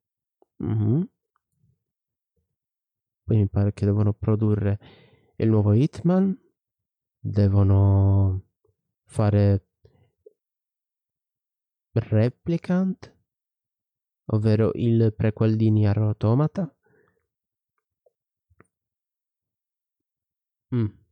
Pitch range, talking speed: 105-130 Hz, 55 wpm